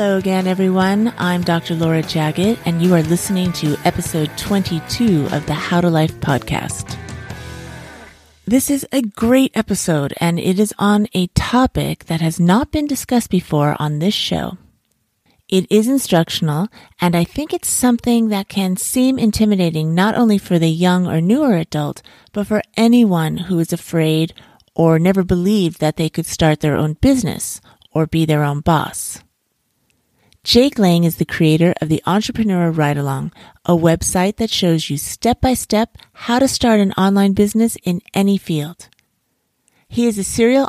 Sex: female